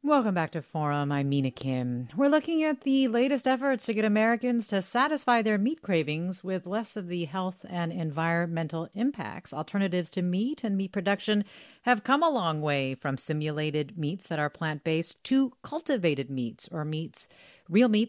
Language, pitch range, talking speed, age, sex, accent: English, 155-235 Hz, 175 wpm, 40-59, female, American